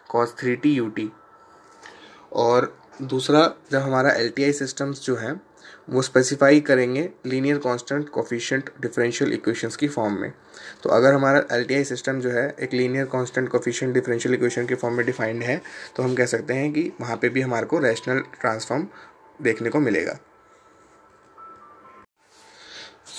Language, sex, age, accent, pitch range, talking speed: Hindi, male, 20-39, native, 125-145 Hz, 150 wpm